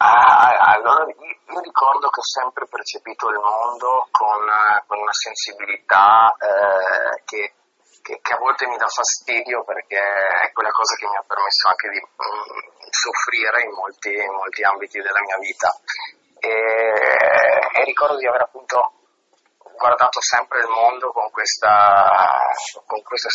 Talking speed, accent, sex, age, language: 140 wpm, native, male, 30-49, Italian